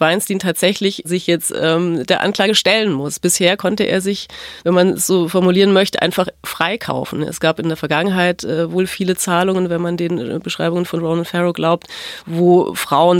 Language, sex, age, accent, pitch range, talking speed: German, female, 30-49, German, 170-200 Hz, 180 wpm